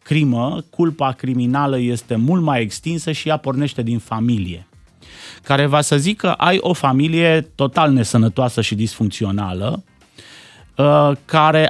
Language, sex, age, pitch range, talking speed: Romanian, male, 30-49, 115-160 Hz, 125 wpm